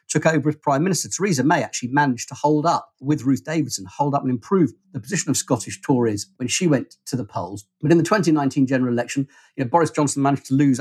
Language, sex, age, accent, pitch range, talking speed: English, male, 50-69, British, 120-145 Hz, 230 wpm